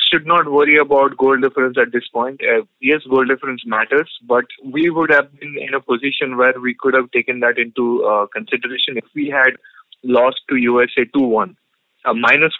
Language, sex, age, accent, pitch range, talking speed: English, male, 20-39, Indian, 120-135 Hz, 190 wpm